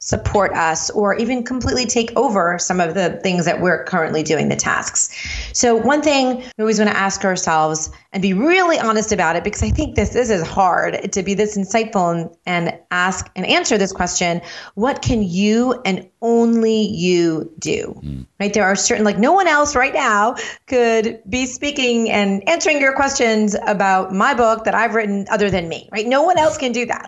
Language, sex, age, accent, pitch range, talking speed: English, female, 30-49, American, 180-230 Hz, 200 wpm